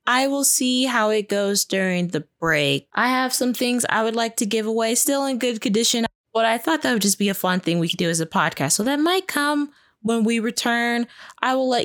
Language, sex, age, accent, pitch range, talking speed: English, female, 20-39, American, 170-230 Hz, 250 wpm